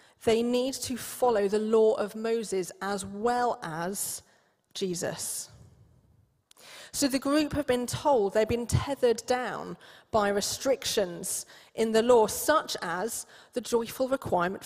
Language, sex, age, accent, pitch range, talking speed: English, female, 30-49, British, 185-235 Hz, 130 wpm